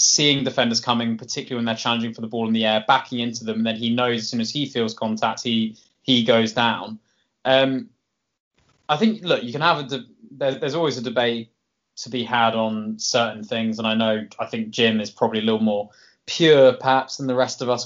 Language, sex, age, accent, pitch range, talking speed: English, male, 20-39, British, 115-130 Hz, 225 wpm